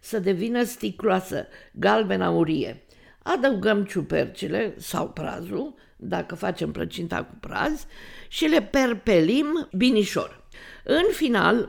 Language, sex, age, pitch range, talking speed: Romanian, female, 50-69, 195-255 Hz, 105 wpm